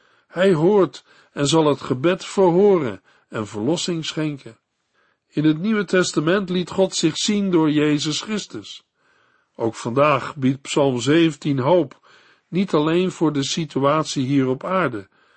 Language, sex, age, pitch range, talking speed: Dutch, male, 50-69, 135-180 Hz, 135 wpm